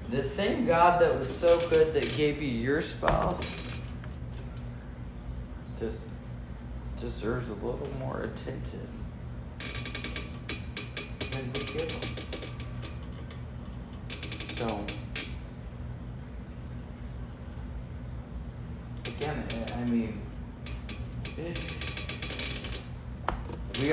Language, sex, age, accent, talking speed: English, male, 40-59, American, 70 wpm